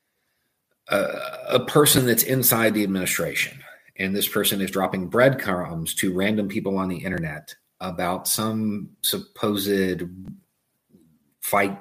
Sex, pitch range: male, 95-120 Hz